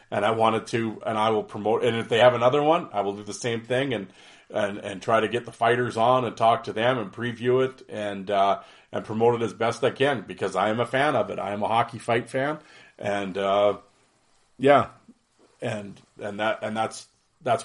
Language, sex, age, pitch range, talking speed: English, male, 40-59, 105-120 Hz, 230 wpm